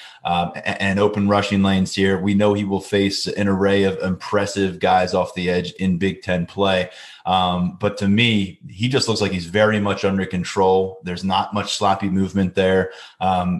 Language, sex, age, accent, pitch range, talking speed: English, male, 20-39, American, 95-105 Hz, 190 wpm